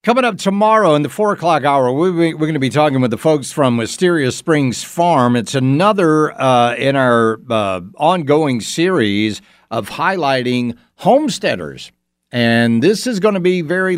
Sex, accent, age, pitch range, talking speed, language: male, American, 60-79, 110-165 Hz, 165 wpm, English